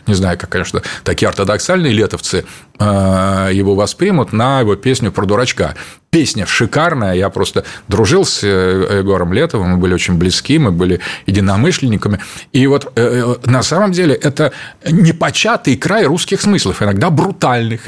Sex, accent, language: male, native, Russian